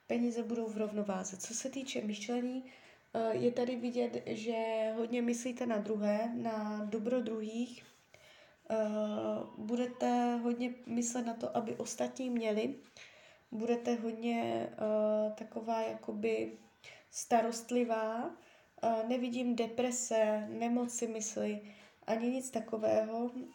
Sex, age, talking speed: female, 20-39, 100 wpm